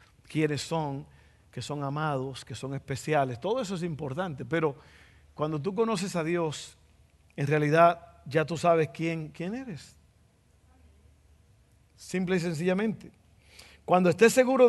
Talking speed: 130 wpm